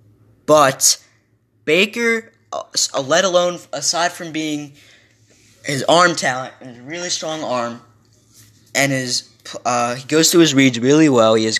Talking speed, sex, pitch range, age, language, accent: 140 wpm, male, 120-170 Hz, 10-29, English, American